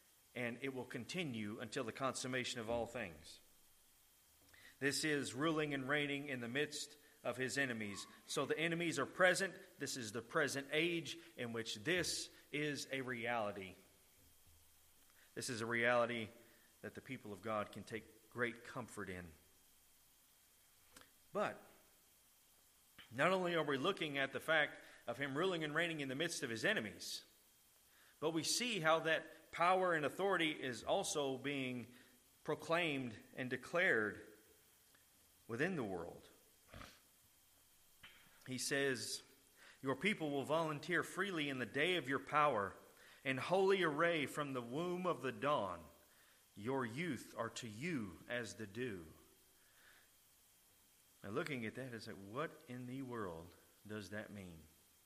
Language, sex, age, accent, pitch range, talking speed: English, male, 40-59, American, 110-155 Hz, 145 wpm